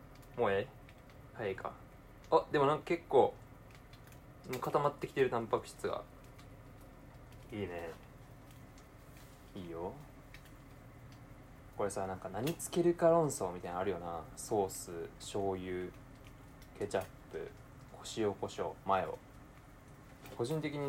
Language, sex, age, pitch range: Japanese, male, 20-39, 115-140 Hz